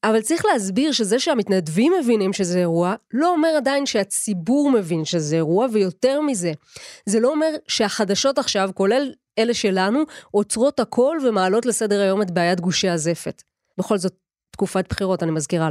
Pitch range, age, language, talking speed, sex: 190-260 Hz, 20-39, Hebrew, 155 wpm, female